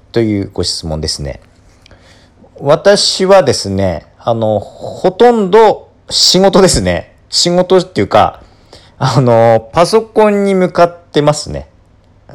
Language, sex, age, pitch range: Japanese, male, 40-59, 90-135 Hz